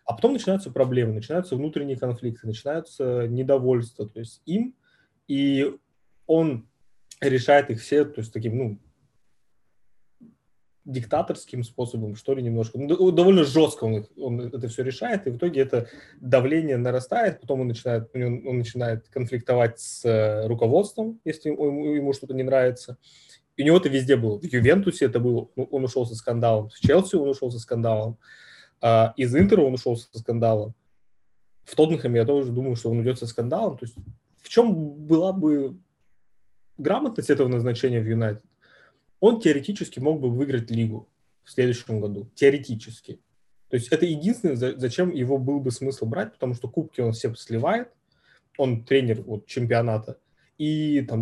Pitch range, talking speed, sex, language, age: 115-145 Hz, 155 wpm, male, Russian, 20-39